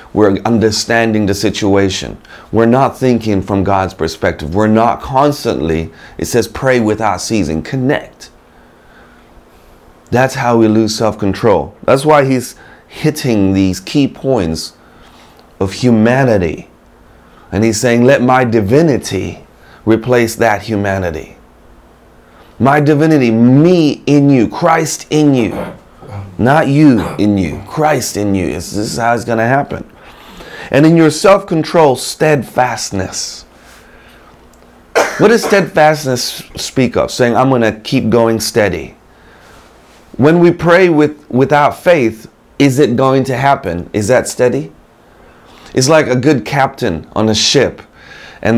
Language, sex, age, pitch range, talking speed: English, male, 30-49, 105-150 Hz, 130 wpm